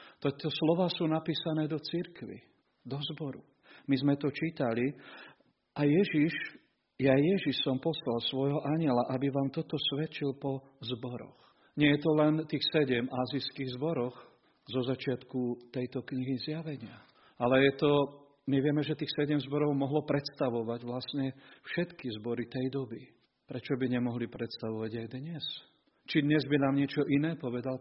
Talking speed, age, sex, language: 145 wpm, 40-59, male, Slovak